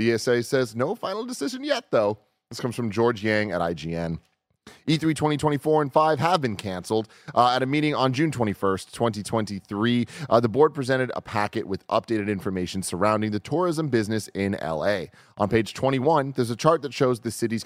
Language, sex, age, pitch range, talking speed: English, male, 30-49, 95-130 Hz, 185 wpm